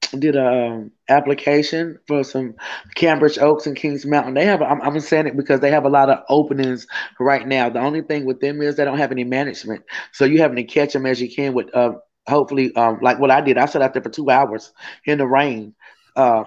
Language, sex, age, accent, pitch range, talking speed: English, male, 20-39, American, 135-155 Hz, 240 wpm